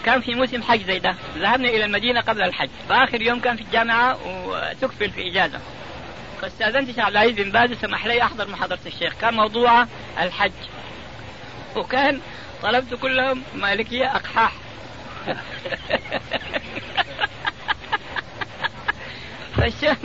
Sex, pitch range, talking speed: female, 225-260 Hz, 115 wpm